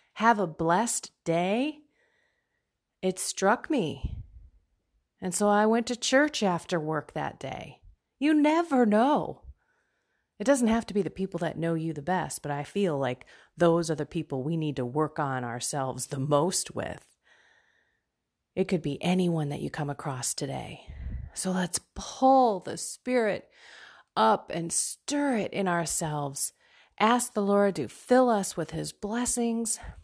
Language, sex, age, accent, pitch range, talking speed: English, female, 30-49, American, 155-230 Hz, 155 wpm